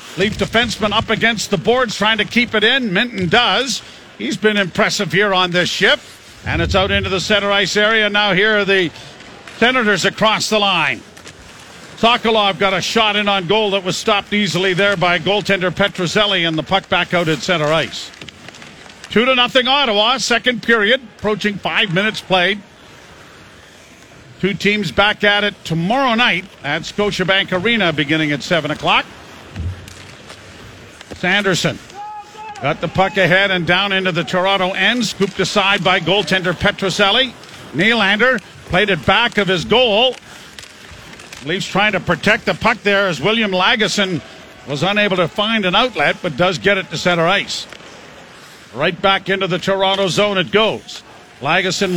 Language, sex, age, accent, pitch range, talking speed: English, male, 50-69, American, 180-210 Hz, 160 wpm